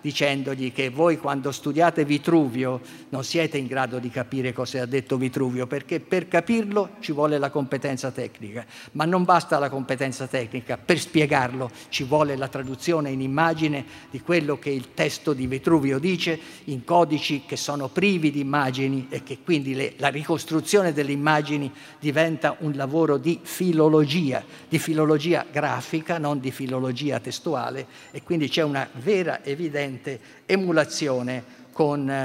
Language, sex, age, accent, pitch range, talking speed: Italian, male, 50-69, native, 130-155 Hz, 150 wpm